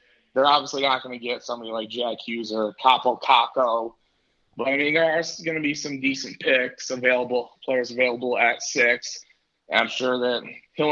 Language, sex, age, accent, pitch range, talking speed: English, male, 20-39, American, 115-130 Hz, 180 wpm